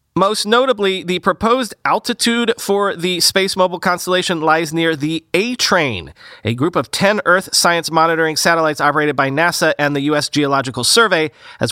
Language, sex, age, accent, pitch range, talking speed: English, male, 30-49, American, 145-190 Hz, 160 wpm